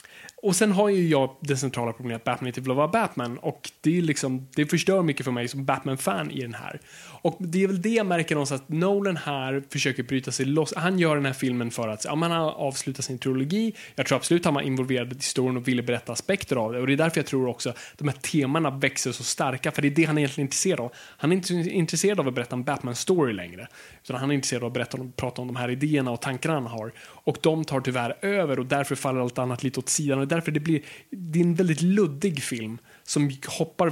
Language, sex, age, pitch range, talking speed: Swedish, male, 20-39, 130-165 Hz, 255 wpm